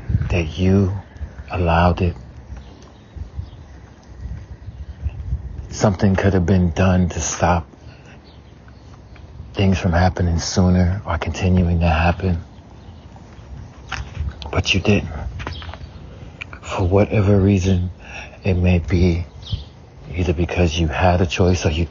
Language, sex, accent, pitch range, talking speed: English, male, American, 80-95 Hz, 100 wpm